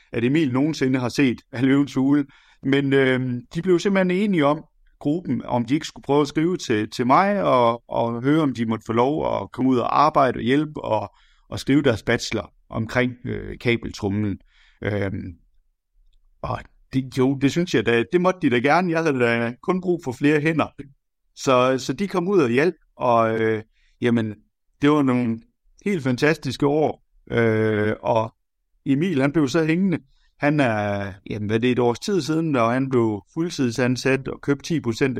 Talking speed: 185 wpm